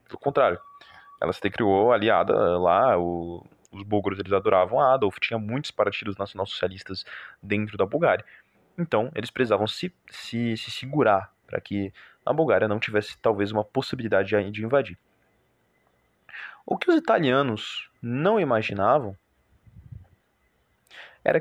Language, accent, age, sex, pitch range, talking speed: Portuguese, Brazilian, 20-39, male, 100-130 Hz, 120 wpm